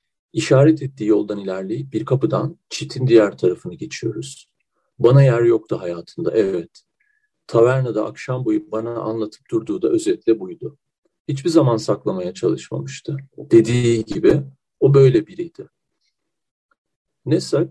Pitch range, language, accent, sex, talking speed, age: 115-175 Hz, Turkish, native, male, 115 wpm, 40-59